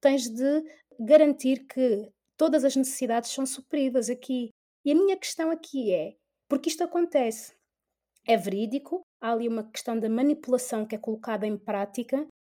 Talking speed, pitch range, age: 155 wpm, 220-280 Hz, 20-39